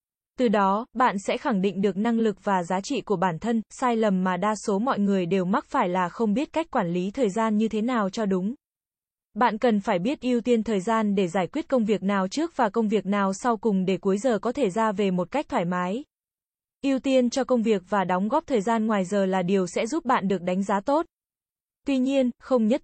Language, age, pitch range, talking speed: Vietnamese, 10-29, 200-245 Hz, 250 wpm